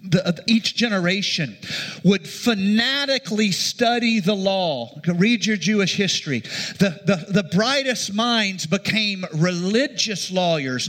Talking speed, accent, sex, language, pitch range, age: 105 wpm, American, male, English, 165-215 Hz, 50-69